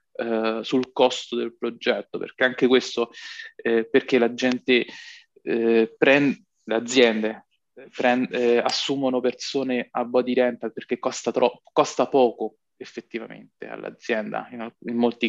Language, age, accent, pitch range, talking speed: Italian, 20-39, native, 115-135 Hz, 120 wpm